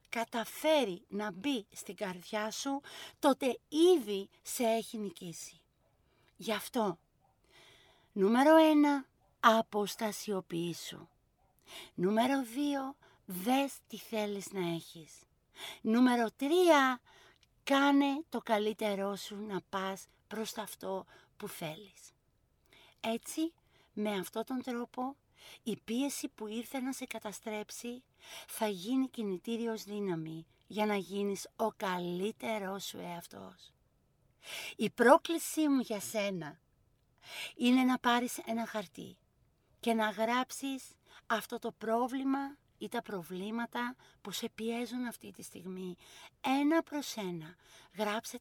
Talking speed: 110 wpm